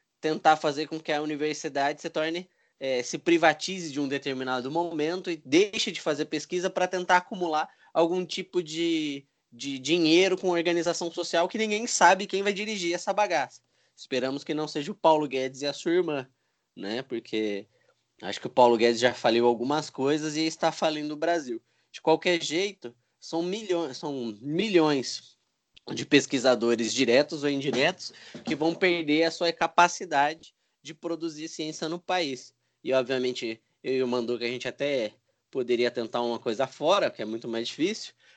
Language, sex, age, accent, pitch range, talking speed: Portuguese, male, 20-39, Brazilian, 130-170 Hz, 170 wpm